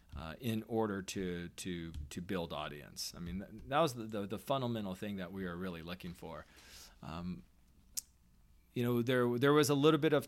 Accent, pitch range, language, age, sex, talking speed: American, 95-120 Hz, English, 40-59, male, 195 wpm